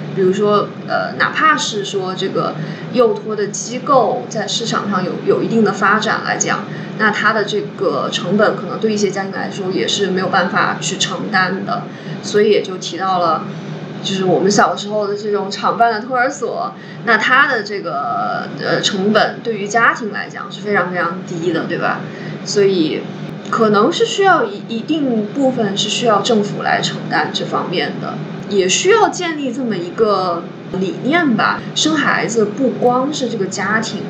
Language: Chinese